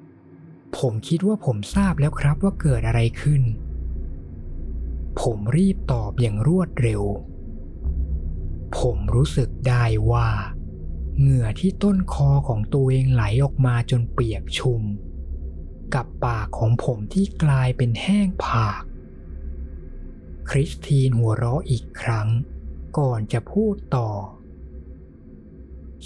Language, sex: Thai, male